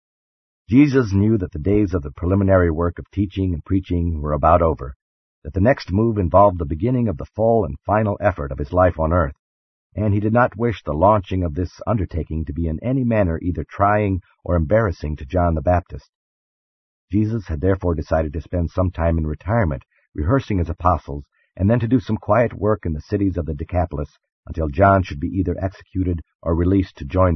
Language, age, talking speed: English, 50-69, 205 wpm